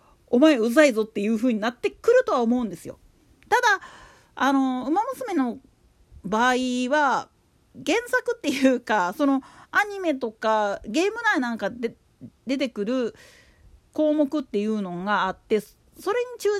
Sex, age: female, 40-59